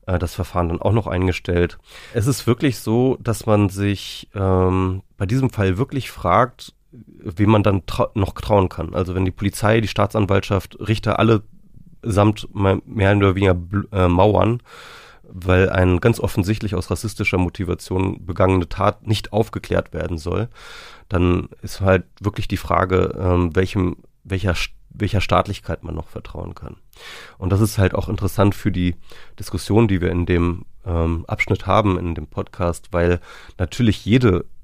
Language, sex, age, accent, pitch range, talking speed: German, male, 30-49, German, 90-105 Hz, 160 wpm